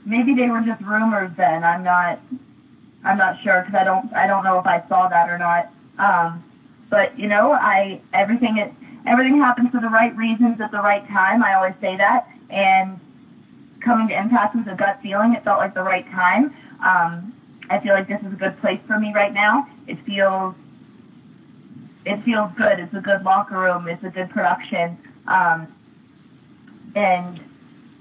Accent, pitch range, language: American, 185-240 Hz, English